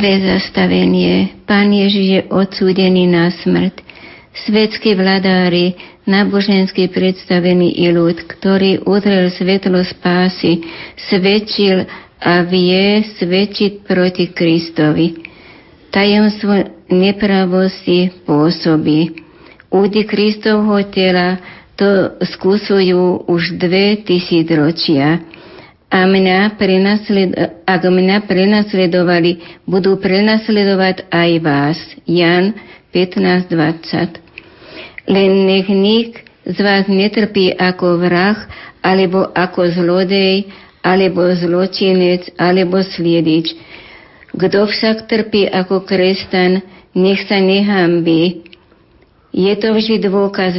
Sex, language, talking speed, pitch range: female, Slovak, 85 wpm, 175-200 Hz